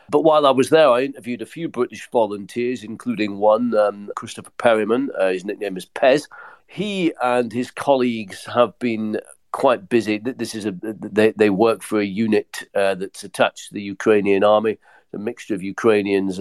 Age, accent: 40-59, British